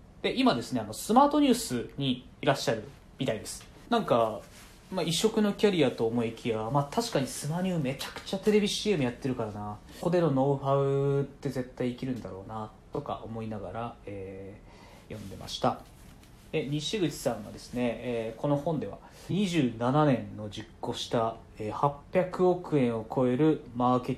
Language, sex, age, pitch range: Japanese, male, 20-39, 110-170 Hz